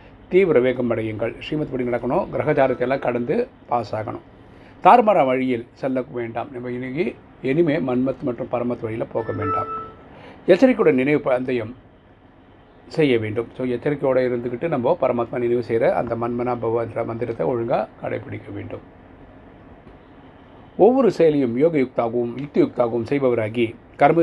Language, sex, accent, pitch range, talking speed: Tamil, male, native, 120-140 Hz, 120 wpm